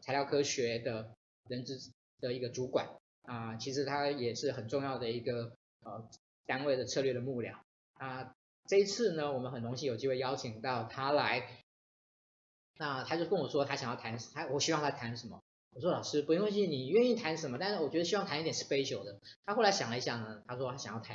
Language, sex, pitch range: Chinese, male, 120-150 Hz